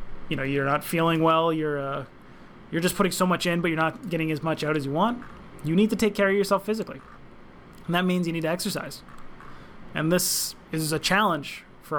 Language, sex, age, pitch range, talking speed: English, male, 30-49, 155-185 Hz, 225 wpm